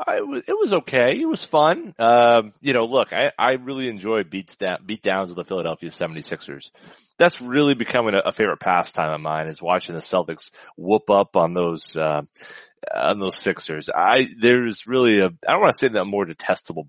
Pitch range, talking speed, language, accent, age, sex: 95-120 Hz, 205 wpm, English, American, 30-49, male